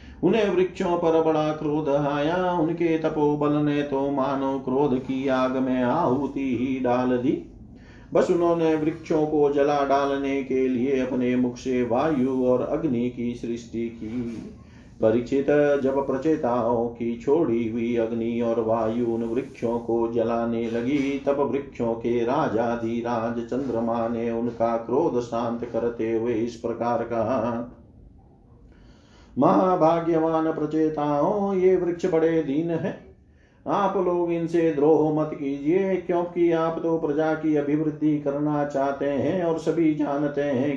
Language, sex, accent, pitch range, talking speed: Hindi, male, native, 120-150 Hz, 110 wpm